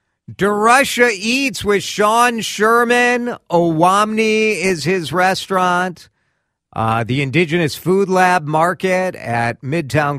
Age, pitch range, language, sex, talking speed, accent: 50-69, 110-160 Hz, English, male, 100 wpm, American